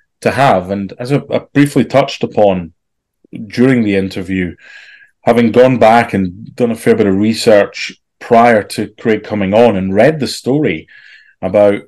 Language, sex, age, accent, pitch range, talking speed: English, male, 30-49, British, 95-120 Hz, 160 wpm